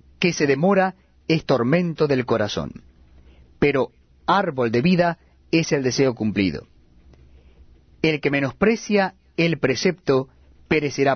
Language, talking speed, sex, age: Spanish, 115 wpm, male, 30-49